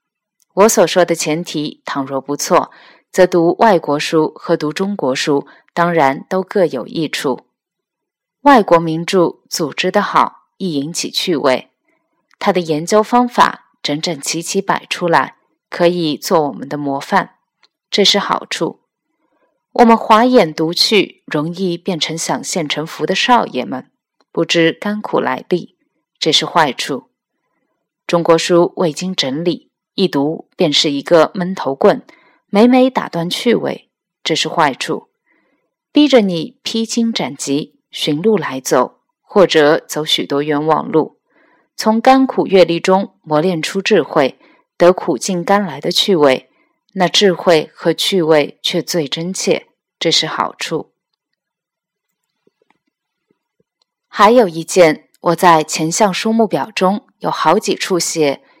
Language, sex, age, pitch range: Chinese, female, 20-39, 160-205 Hz